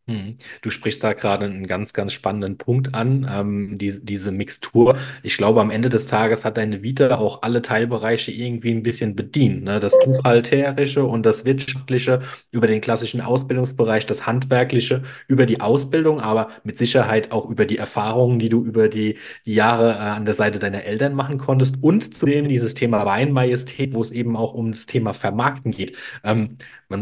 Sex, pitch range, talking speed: male, 110-135 Hz, 180 wpm